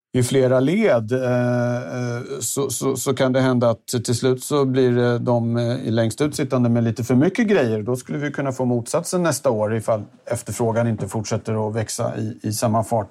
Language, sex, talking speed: Swedish, male, 190 wpm